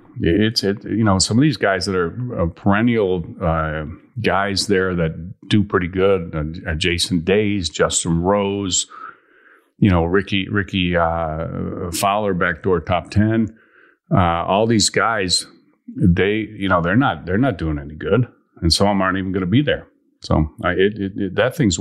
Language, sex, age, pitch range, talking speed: English, male, 40-59, 85-105 Hz, 180 wpm